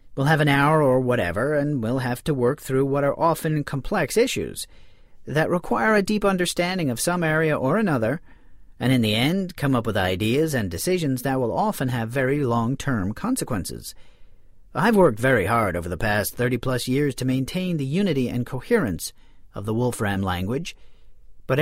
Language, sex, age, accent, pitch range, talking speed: English, male, 40-59, American, 125-175 Hz, 180 wpm